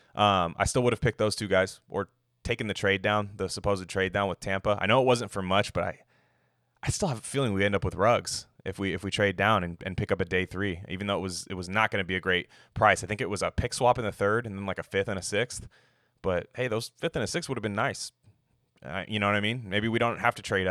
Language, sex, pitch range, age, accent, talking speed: English, male, 90-120 Hz, 20-39, American, 300 wpm